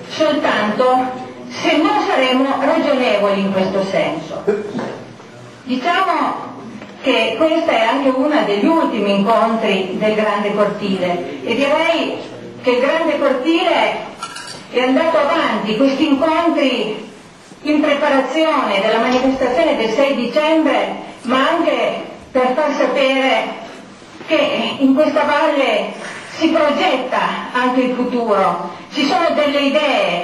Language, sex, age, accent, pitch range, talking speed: Italian, female, 40-59, native, 225-295 Hz, 110 wpm